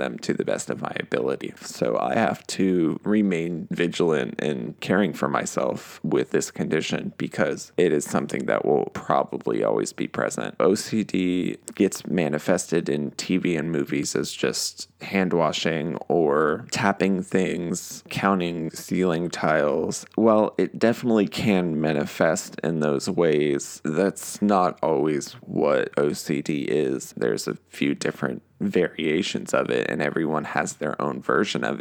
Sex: male